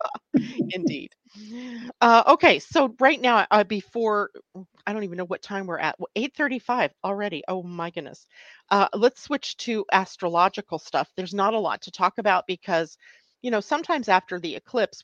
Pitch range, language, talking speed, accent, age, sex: 175-230 Hz, English, 165 wpm, American, 40-59, female